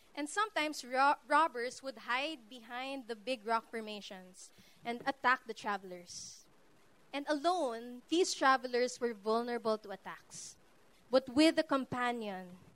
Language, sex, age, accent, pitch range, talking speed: English, female, 20-39, Filipino, 215-280 Hz, 120 wpm